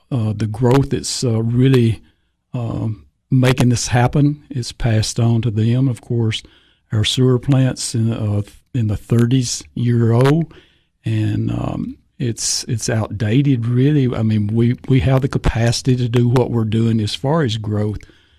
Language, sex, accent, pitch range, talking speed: English, male, American, 110-125 Hz, 160 wpm